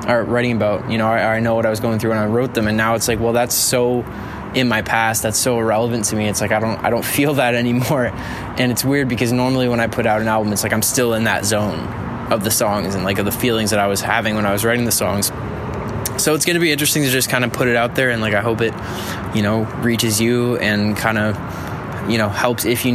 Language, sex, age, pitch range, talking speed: English, male, 20-39, 105-120 Hz, 280 wpm